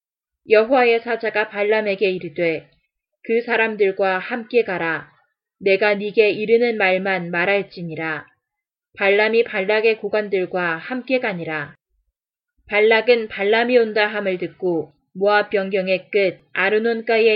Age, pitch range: 20-39, 180-220 Hz